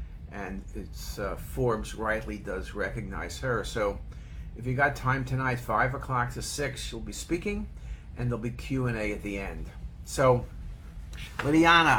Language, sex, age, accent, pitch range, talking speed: English, male, 50-69, American, 105-130 Hz, 150 wpm